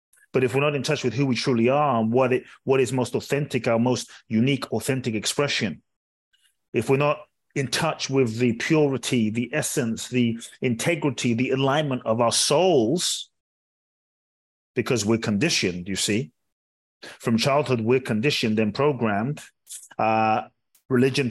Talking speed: 150 wpm